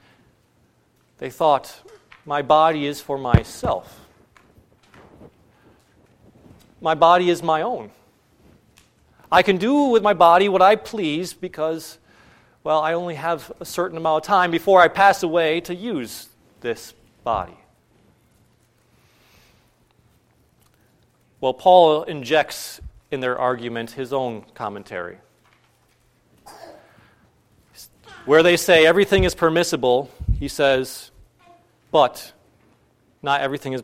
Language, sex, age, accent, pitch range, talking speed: English, male, 40-59, American, 130-175 Hz, 105 wpm